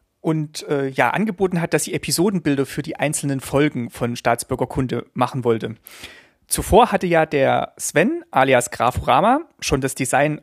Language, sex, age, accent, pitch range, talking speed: German, male, 30-49, German, 130-165 Hz, 150 wpm